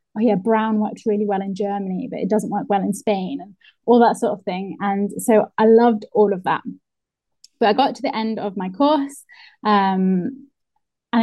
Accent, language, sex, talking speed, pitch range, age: British, English, female, 210 wpm, 205-245 Hz, 10-29